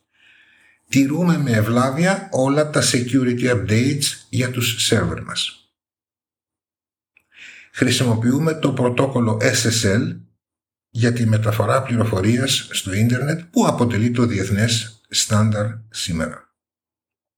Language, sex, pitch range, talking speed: Greek, male, 110-140 Hz, 95 wpm